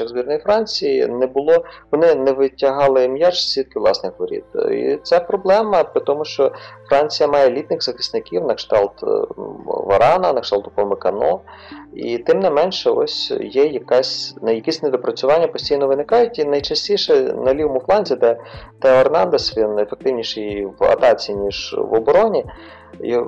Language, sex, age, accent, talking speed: Ukrainian, male, 30-49, native, 135 wpm